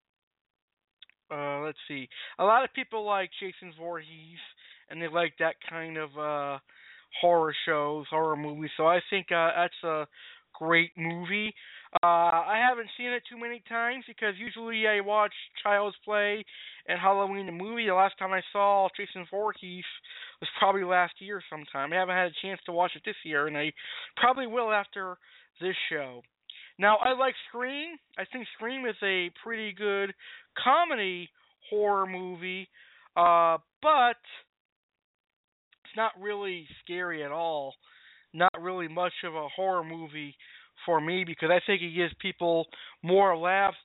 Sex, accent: male, American